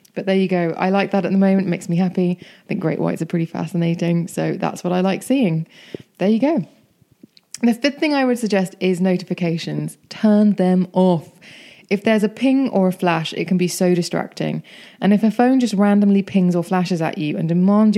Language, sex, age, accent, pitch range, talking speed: English, female, 20-39, British, 170-205 Hz, 220 wpm